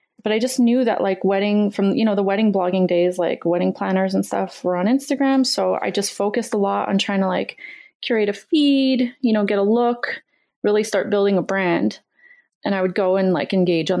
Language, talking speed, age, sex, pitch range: English, 225 wpm, 30-49, female, 185-235 Hz